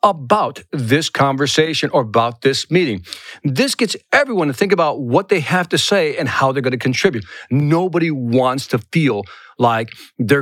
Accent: American